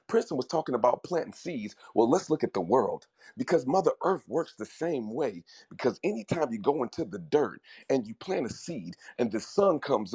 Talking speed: 205 wpm